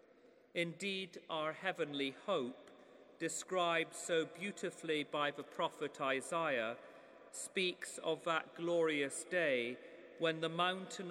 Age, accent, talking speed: 40-59, British, 105 wpm